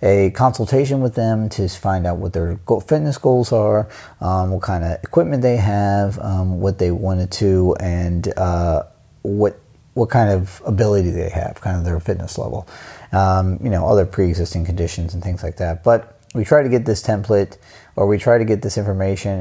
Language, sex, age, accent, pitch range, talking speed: English, male, 30-49, American, 90-110 Hz, 195 wpm